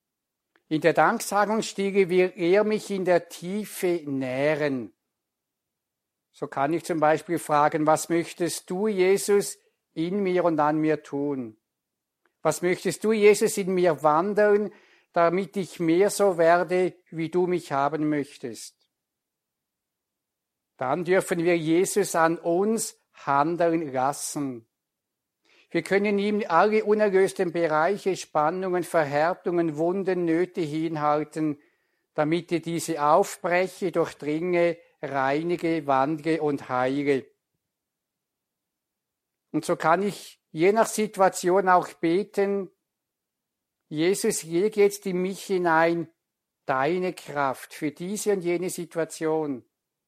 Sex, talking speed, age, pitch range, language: male, 110 wpm, 60-79, 155-190 Hz, German